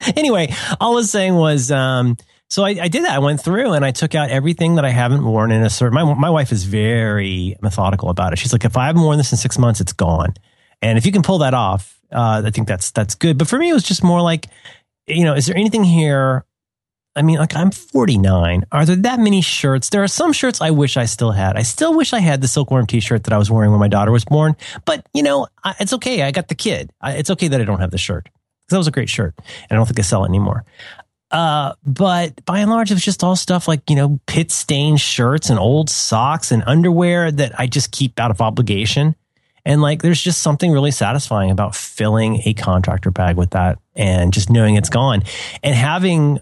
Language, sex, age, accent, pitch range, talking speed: English, male, 30-49, American, 110-160 Hz, 245 wpm